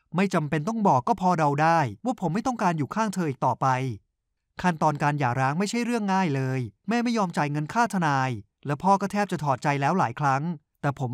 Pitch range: 145-195 Hz